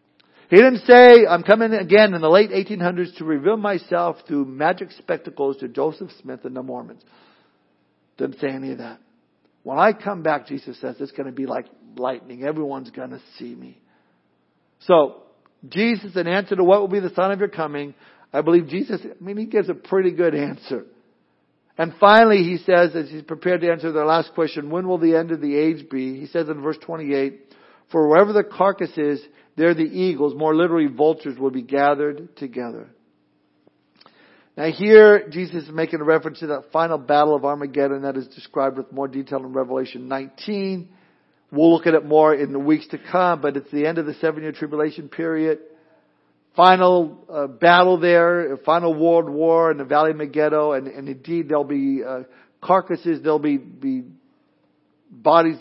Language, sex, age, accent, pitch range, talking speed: English, male, 60-79, American, 140-175 Hz, 185 wpm